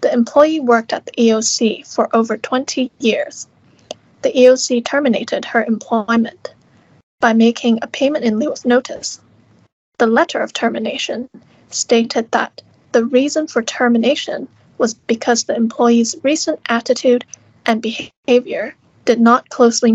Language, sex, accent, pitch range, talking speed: English, female, American, 230-280 Hz, 130 wpm